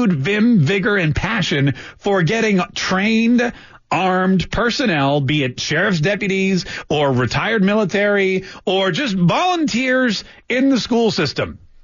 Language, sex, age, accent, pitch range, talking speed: English, male, 40-59, American, 170-235 Hz, 115 wpm